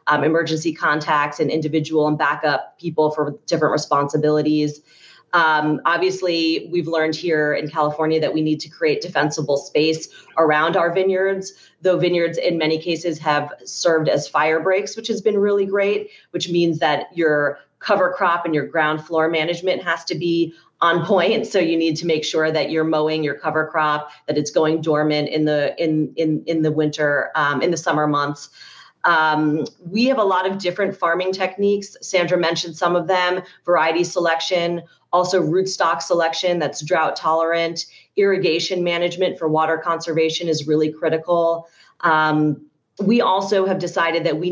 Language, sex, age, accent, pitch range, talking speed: English, female, 30-49, American, 155-175 Hz, 165 wpm